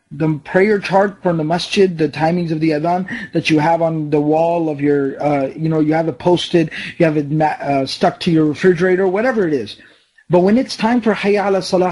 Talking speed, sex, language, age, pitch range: 220 wpm, male, English, 30-49, 160-195 Hz